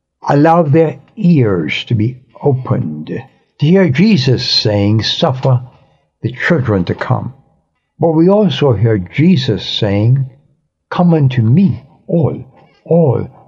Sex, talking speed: male, 115 wpm